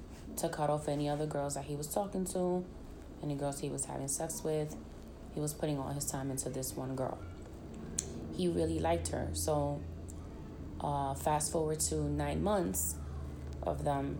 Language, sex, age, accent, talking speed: English, female, 20-39, American, 175 wpm